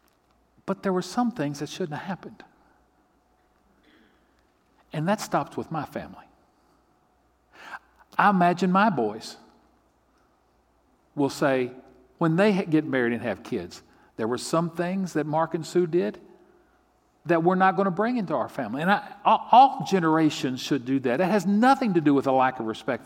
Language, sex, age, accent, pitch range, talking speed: English, male, 50-69, American, 115-185 Hz, 165 wpm